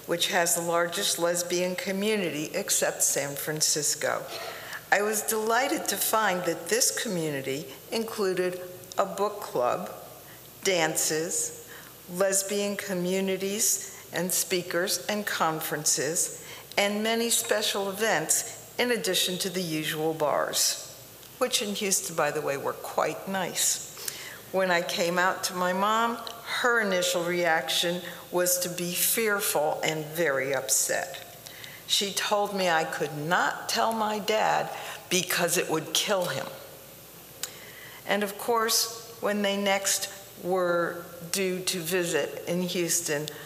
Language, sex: English, female